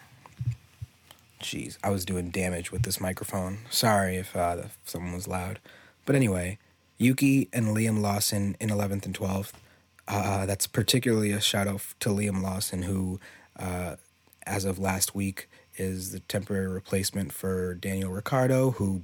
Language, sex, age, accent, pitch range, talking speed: English, male, 30-49, American, 95-110 Hz, 150 wpm